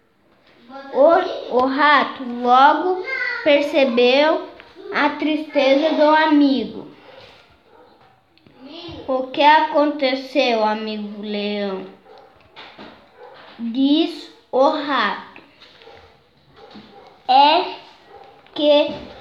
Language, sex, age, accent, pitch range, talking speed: Portuguese, female, 10-29, Brazilian, 270-330 Hz, 60 wpm